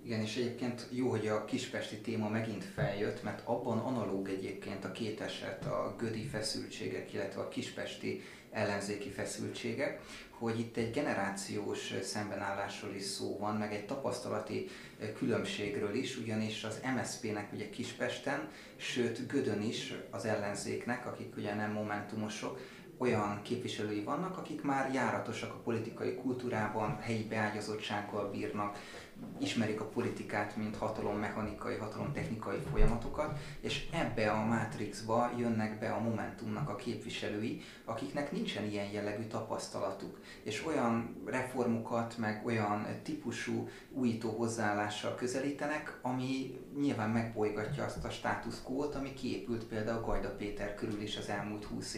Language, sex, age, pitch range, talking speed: Hungarian, male, 30-49, 105-120 Hz, 130 wpm